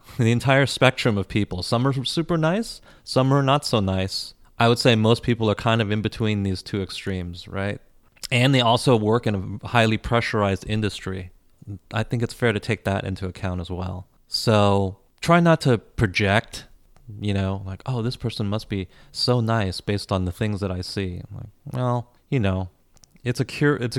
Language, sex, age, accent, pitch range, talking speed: English, male, 30-49, American, 95-125 Hz, 200 wpm